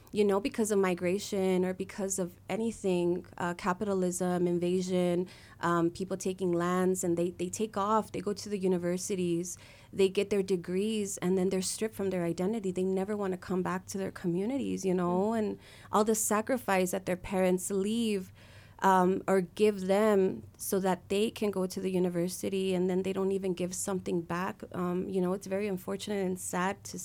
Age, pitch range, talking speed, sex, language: 20-39, 175-195 Hz, 190 wpm, female, English